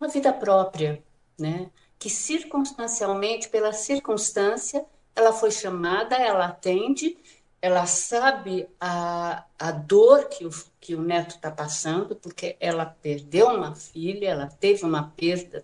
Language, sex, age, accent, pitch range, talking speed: Portuguese, female, 60-79, Brazilian, 165-225 Hz, 130 wpm